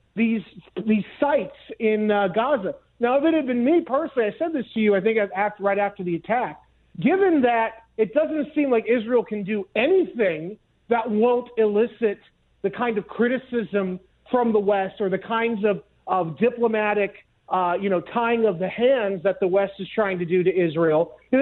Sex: male